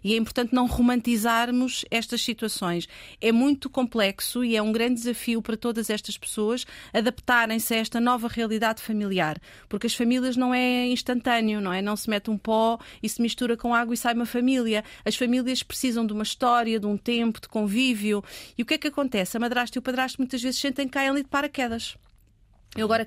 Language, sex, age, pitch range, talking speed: Portuguese, female, 30-49, 225-260 Hz, 205 wpm